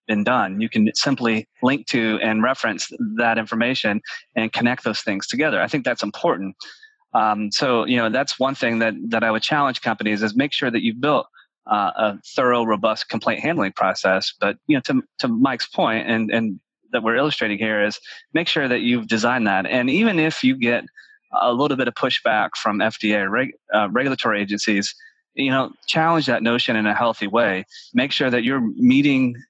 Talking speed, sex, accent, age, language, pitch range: 195 wpm, male, American, 30-49, English, 110-135 Hz